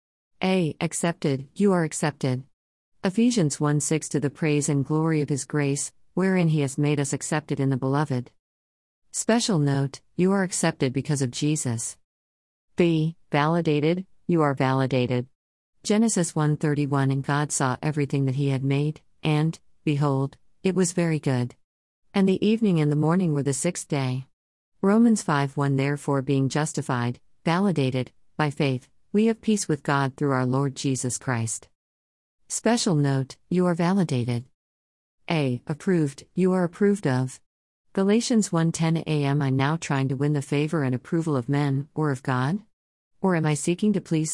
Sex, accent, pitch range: female, American, 135-170 Hz